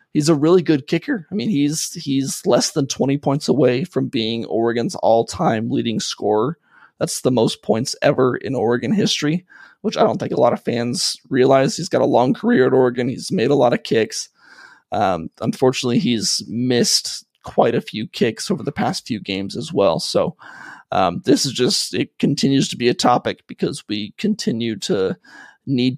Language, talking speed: English, 185 wpm